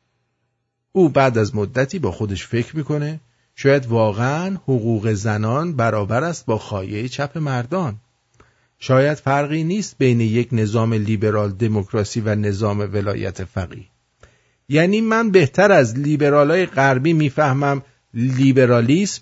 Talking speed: 120 wpm